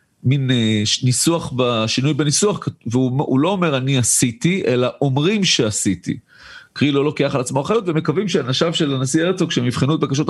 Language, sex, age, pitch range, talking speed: Hebrew, male, 40-59, 115-155 Hz, 165 wpm